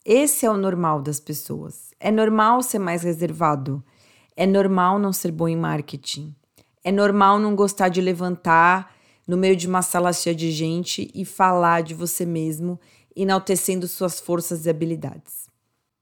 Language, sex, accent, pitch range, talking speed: Portuguese, female, Brazilian, 160-195 Hz, 155 wpm